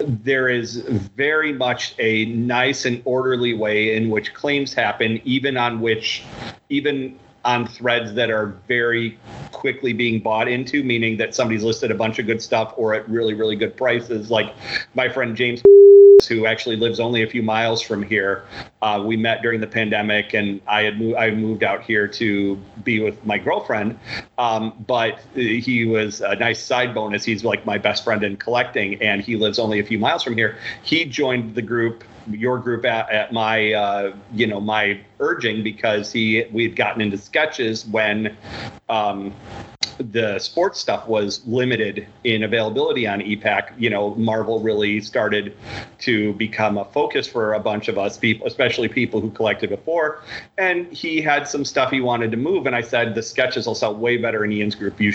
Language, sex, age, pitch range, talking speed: English, male, 40-59, 110-120 Hz, 185 wpm